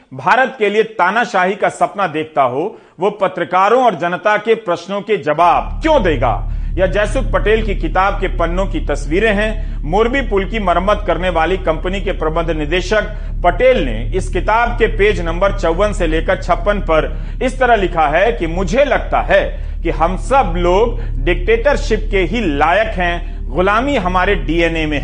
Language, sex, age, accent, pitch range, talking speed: Hindi, male, 40-59, native, 165-225 Hz, 170 wpm